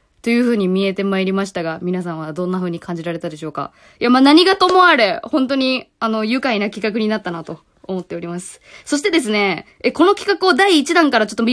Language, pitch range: Japanese, 180-290 Hz